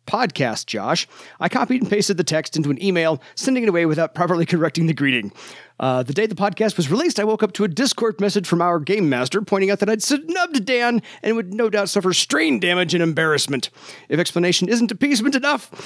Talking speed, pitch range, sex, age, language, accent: 215 wpm, 165-220 Hz, male, 40-59, English, American